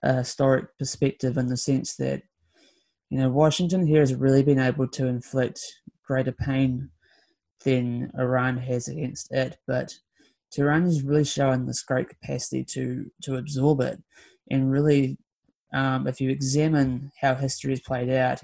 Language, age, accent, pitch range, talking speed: English, 20-39, Australian, 125-140 Hz, 155 wpm